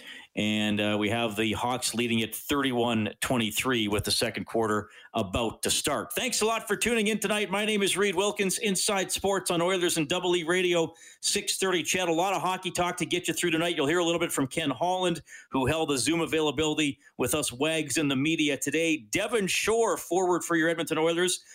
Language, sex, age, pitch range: English, male, 40-59, 130-180 Hz